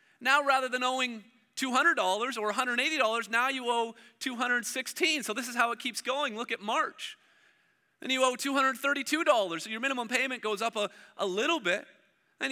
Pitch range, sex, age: 245-310 Hz, male, 30-49